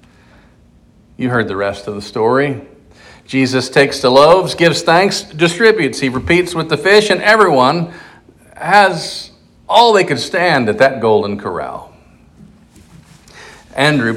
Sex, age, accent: male, 50-69, American